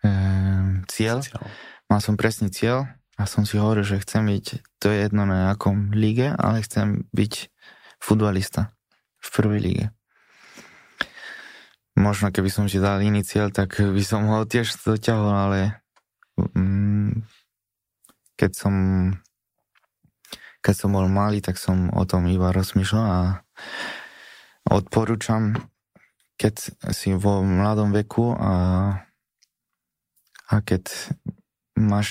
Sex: male